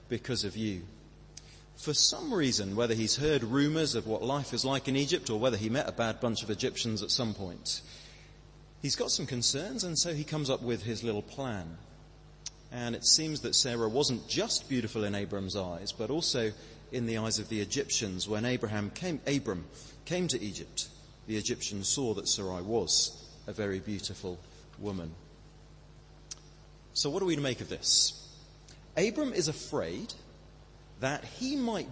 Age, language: 30-49, English